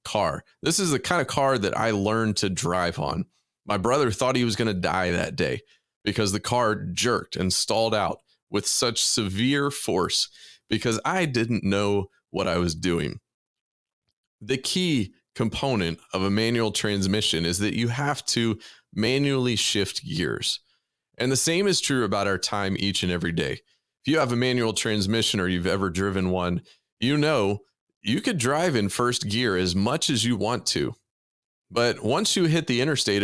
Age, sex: 30-49, male